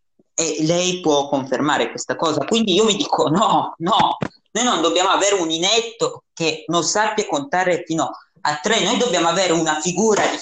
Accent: native